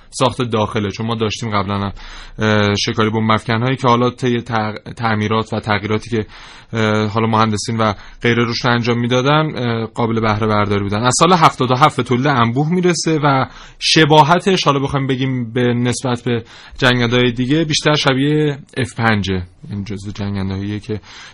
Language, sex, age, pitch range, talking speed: Persian, male, 20-39, 110-140 Hz, 145 wpm